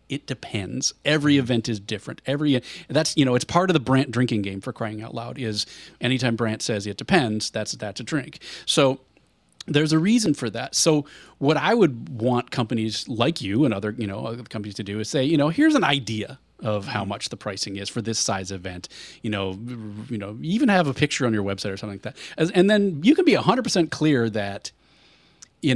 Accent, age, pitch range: American, 30-49, 110-145 Hz